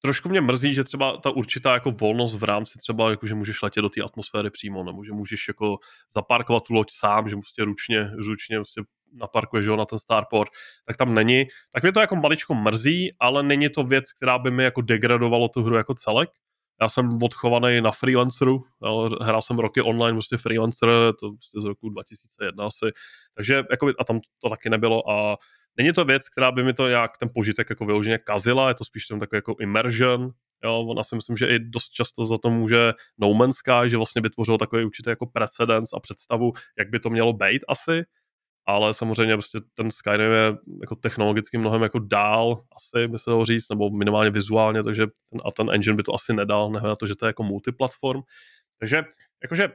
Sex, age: male, 20-39